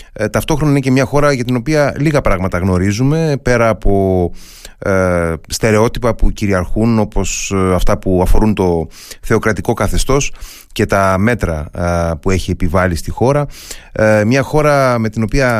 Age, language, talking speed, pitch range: 30-49, Greek, 140 wpm, 95-130 Hz